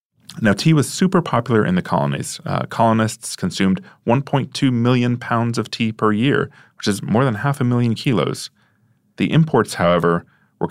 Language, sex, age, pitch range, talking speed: English, male, 30-49, 100-145 Hz, 170 wpm